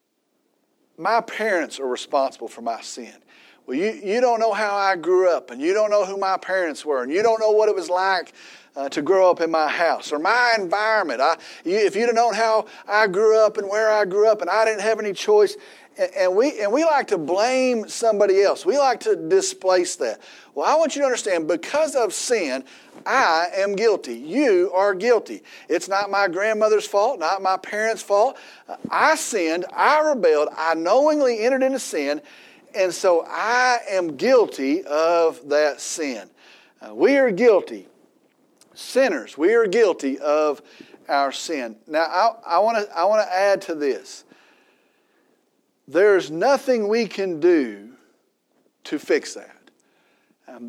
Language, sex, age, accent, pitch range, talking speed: English, male, 40-59, American, 190-310 Hz, 175 wpm